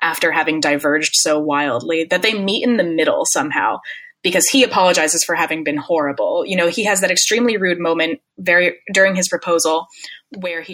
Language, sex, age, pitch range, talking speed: English, female, 20-39, 160-195 Hz, 185 wpm